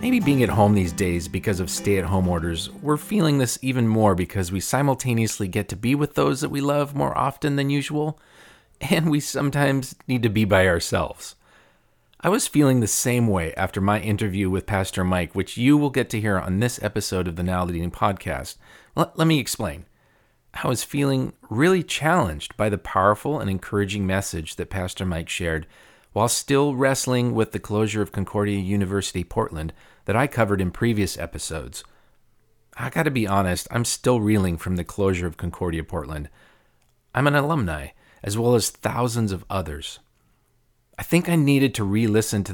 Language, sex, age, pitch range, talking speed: English, male, 40-59, 90-130 Hz, 180 wpm